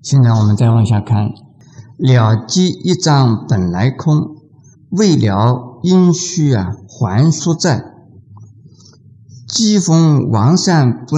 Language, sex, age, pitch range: Chinese, male, 50-69, 115-155 Hz